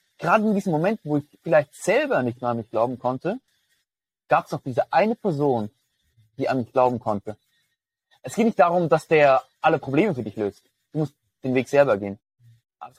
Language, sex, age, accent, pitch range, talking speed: German, male, 20-39, German, 120-145 Hz, 200 wpm